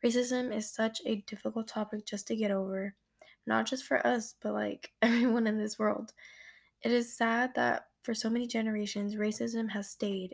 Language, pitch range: English, 200-230 Hz